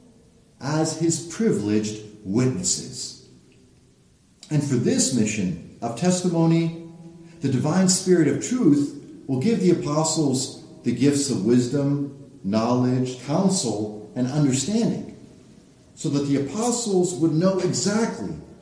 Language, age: English, 50-69